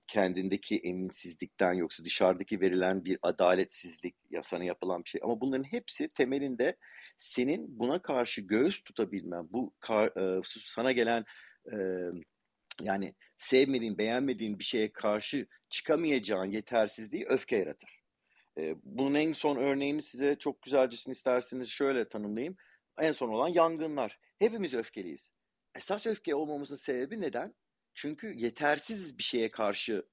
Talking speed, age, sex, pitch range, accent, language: 120 wpm, 50-69, male, 110-150 Hz, native, Turkish